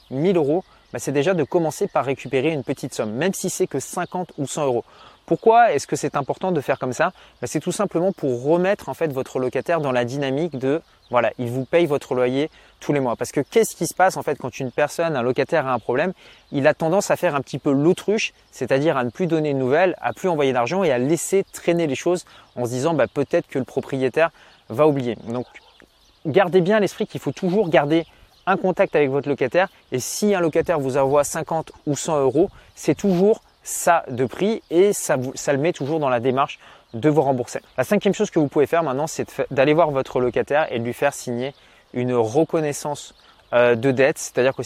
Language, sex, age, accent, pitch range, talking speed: French, male, 30-49, French, 130-170 Hz, 240 wpm